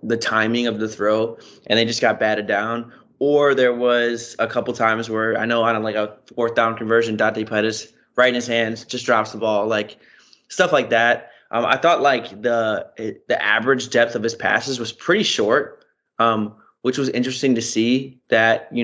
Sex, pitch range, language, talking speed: male, 110-130 Hz, English, 200 wpm